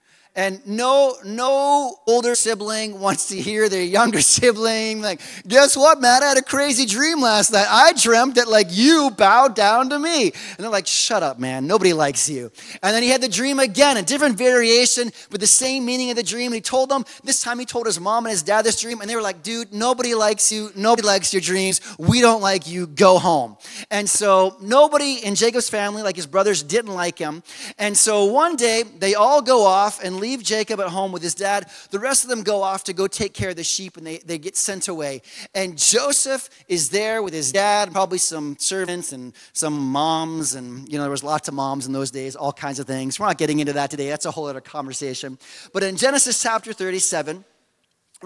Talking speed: 225 wpm